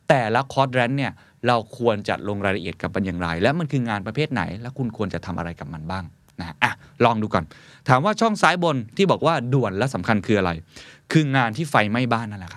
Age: 20-39